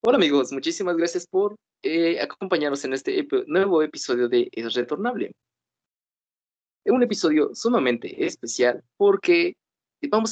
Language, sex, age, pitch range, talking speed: Spanish, male, 20-39, 125-200 Hz, 120 wpm